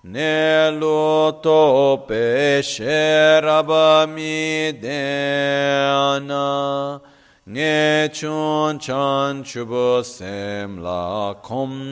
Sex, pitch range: male, 120-155 Hz